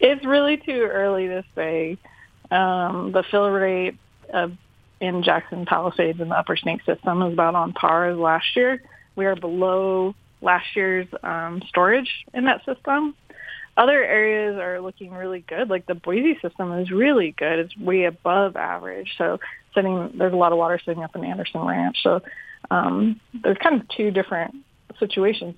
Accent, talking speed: American, 170 wpm